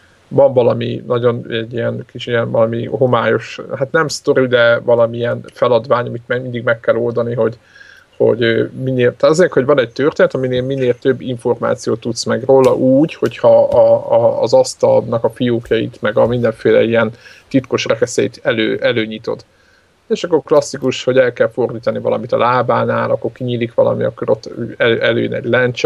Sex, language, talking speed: male, Hungarian, 160 wpm